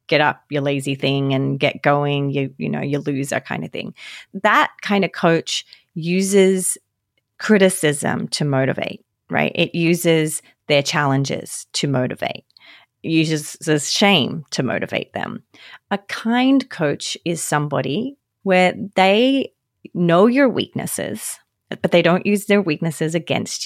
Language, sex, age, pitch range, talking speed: English, female, 30-49, 150-205 Hz, 135 wpm